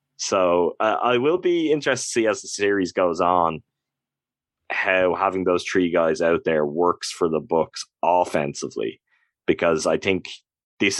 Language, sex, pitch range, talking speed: English, male, 80-95 Hz, 160 wpm